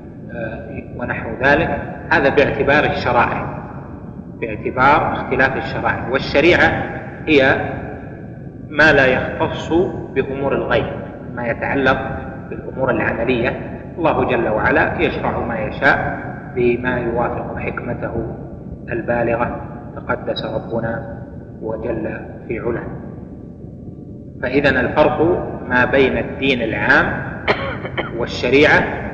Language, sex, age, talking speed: Arabic, male, 30-49, 85 wpm